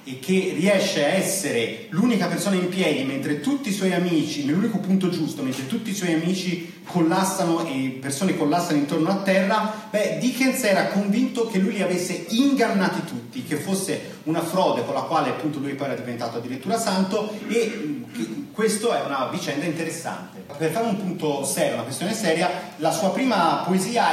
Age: 30-49